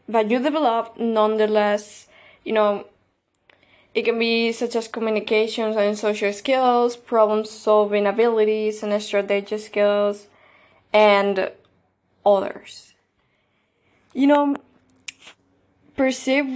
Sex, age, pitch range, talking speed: female, 20-39, 200-225 Hz, 95 wpm